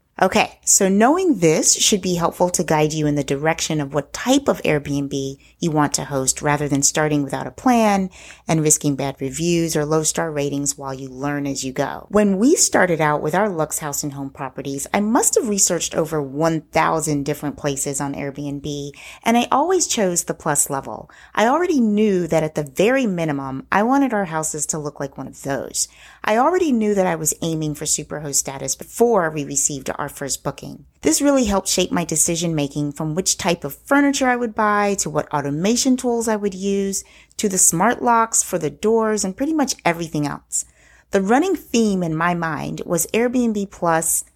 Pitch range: 145-205 Hz